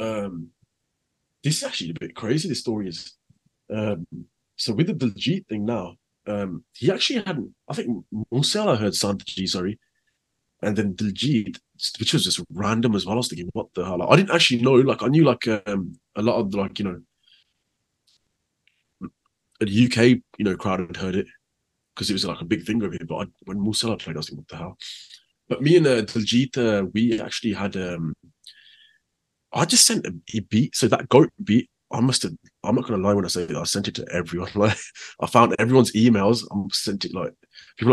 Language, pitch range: English, 100-125 Hz